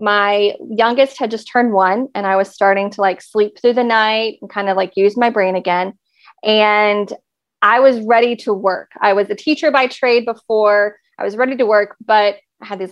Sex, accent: female, American